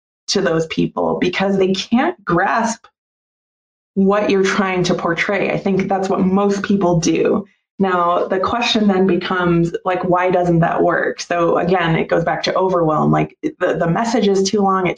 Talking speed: 175 wpm